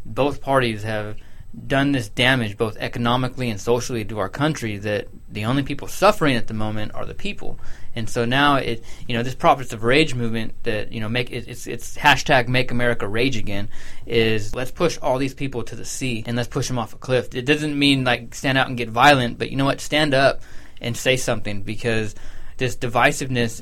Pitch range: 115-135 Hz